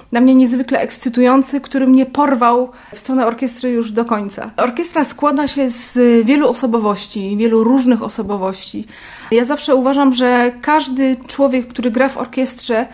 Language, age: Polish, 30-49